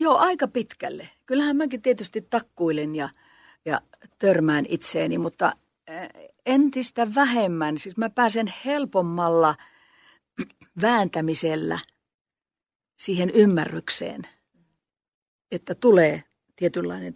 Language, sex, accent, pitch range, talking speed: Finnish, female, native, 170-250 Hz, 85 wpm